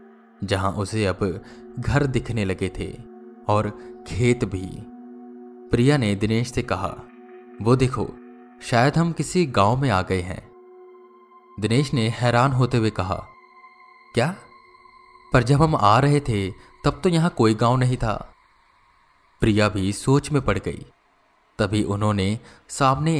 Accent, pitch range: native, 100-135 Hz